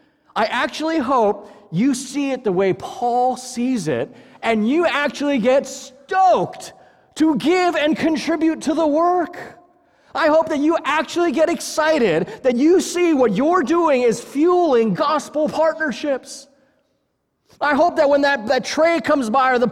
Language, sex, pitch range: English, male, 245-325 Hz